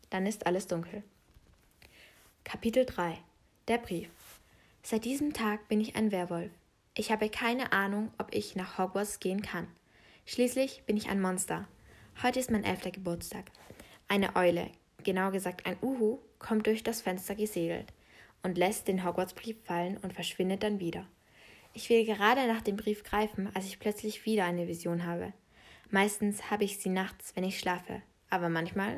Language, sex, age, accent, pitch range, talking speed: German, female, 20-39, German, 180-220 Hz, 165 wpm